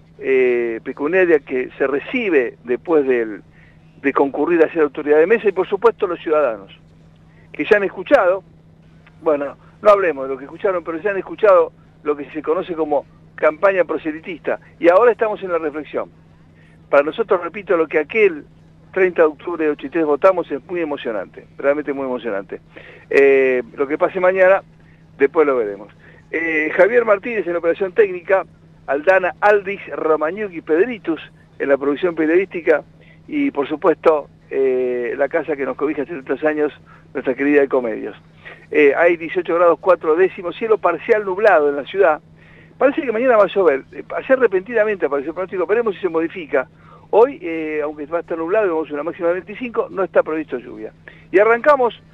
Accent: Argentinian